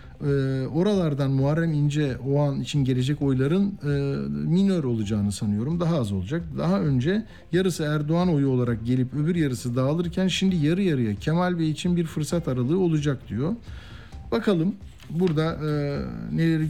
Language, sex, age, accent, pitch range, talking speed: Turkish, male, 50-69, native, 120-165 Hz, 135 wpm